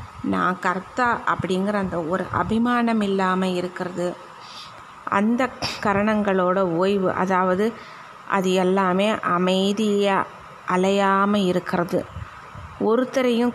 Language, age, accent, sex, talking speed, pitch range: Tamil, 20-39, native, female, 80 wpm, 195-235 Hz